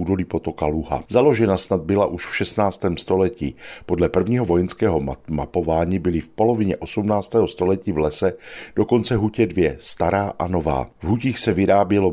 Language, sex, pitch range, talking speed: Czech, male, 80-105 Hz, 160 wpm